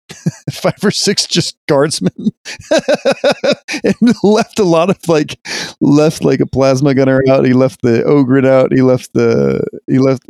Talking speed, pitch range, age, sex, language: 155 wpm, 115-145 Hz, 30-49, male, English